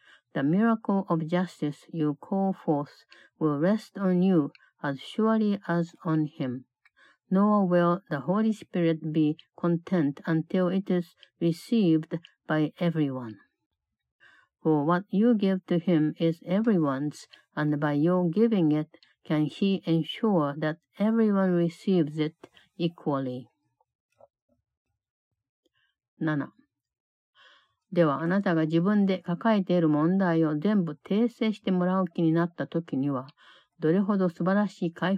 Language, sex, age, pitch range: Japanese, female, 60-79, 155-190 Hz